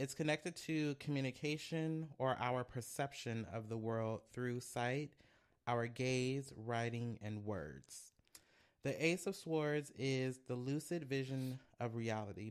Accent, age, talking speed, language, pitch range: American, 30-49, 130 wpm, English, 115-140 Hz